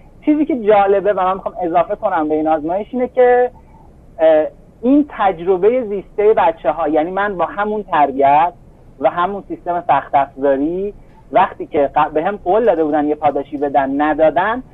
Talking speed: 150 wpm